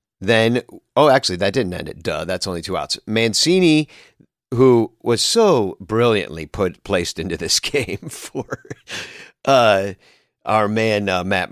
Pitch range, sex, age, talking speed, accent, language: 95-120 Hz, male, 50-69, 145 wpm, American, English